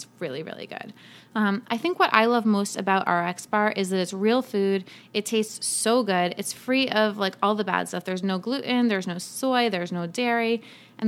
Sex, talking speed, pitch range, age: female, 215 wpm, 195-230 Hz, 20-39